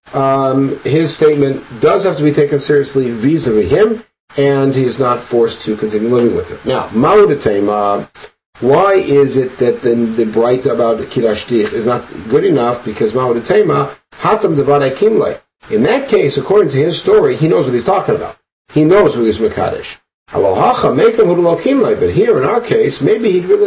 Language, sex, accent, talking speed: English, male, American, 170 wpm